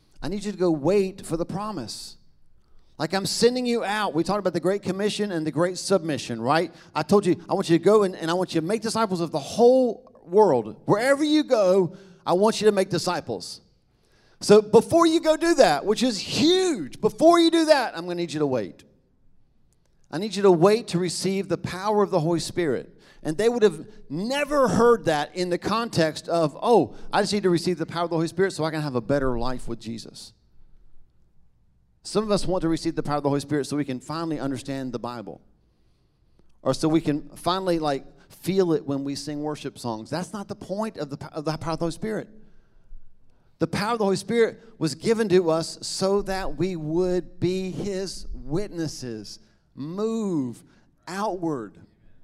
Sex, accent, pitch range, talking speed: male, American, 150-205 Hz, 210 wpm